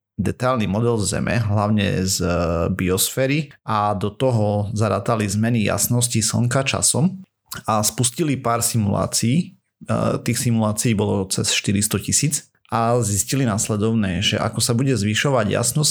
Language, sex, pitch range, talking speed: Slovak, male, 100-120 Hz, 125 wpm